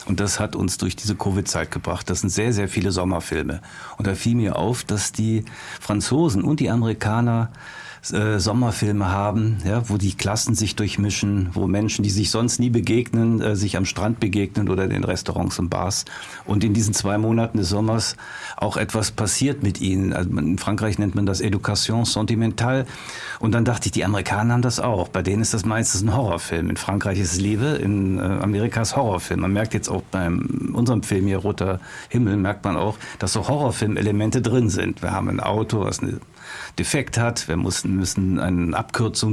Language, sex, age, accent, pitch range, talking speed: German, male, 50-69, German, 100-115 Hz, 190 wpm